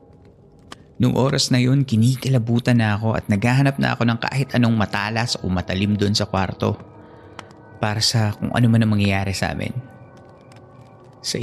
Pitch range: 105-130 Hz